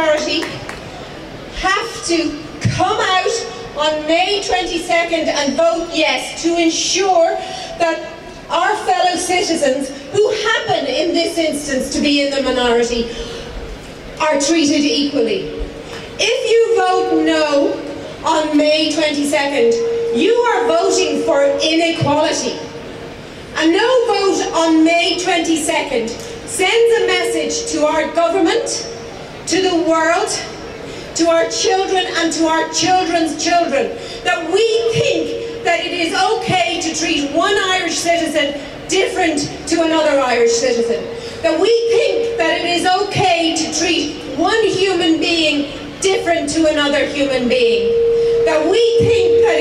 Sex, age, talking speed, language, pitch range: female, 40-59, 125 wpm, English, 305-390 Hz